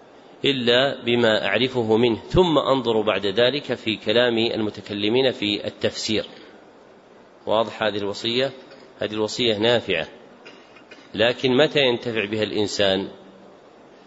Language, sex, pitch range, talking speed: Arabic, male, 110-130 Hz, 100 wpm